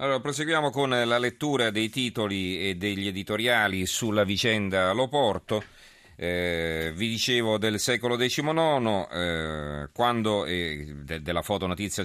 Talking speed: 130 wpm